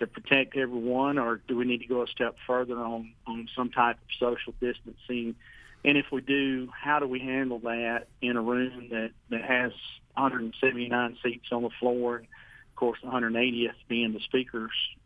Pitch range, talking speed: 115-130 Hz, 185 wpm